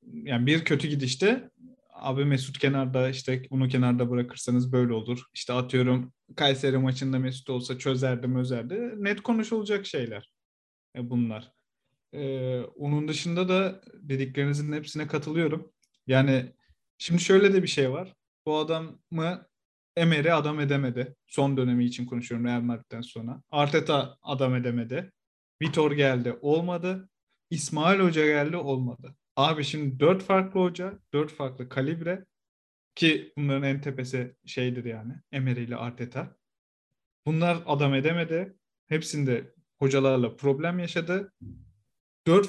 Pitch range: 125-155 Hz